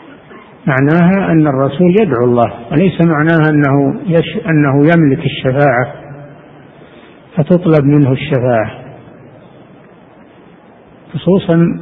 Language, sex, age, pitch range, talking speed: Arabic, male, 60-79, 130-160 Hz, 75 wpm